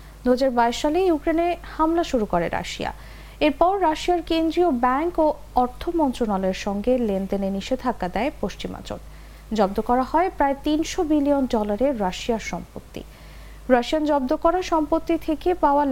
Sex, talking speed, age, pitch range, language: female, 130 wpm, 50-69, 215-315 Hz, English